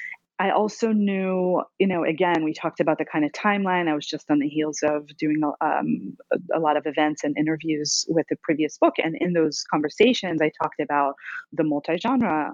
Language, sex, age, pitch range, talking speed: English, female, 30-49, 150-200 Hz, 195 wpm